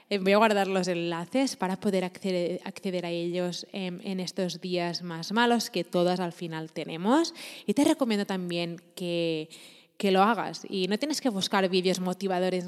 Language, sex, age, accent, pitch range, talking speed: Spanish, female, 20-39, Spanish, 175-205 Hz, 175 wpm